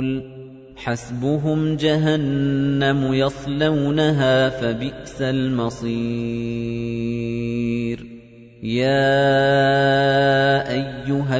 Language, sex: Arabic, male